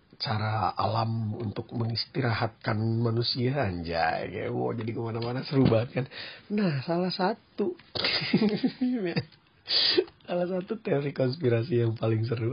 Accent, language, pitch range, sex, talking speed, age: native, Indonesian, 110-145 Hz, male, 105 wpm, 40-59